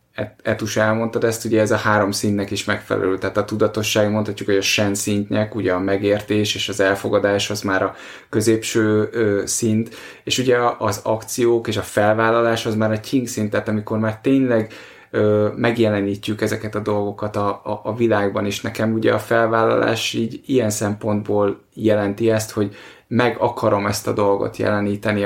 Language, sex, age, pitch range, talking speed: Hungarian, male, 20-39, 100-115 Hz, 175 wpm